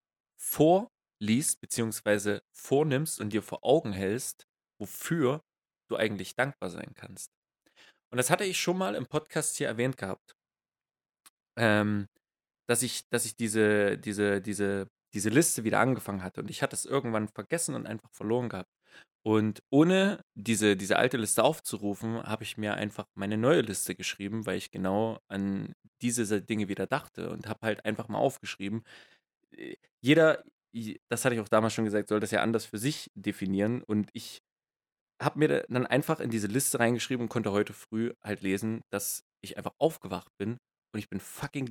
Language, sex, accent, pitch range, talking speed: German, male, German, 105-130 Hz, 165 wpm